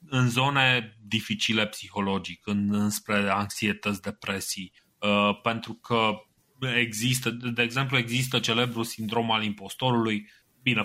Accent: native